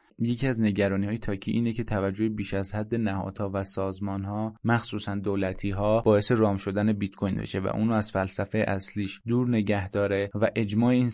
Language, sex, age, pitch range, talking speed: Persian, male, 20-39, 100-115 Hz, 180 wpm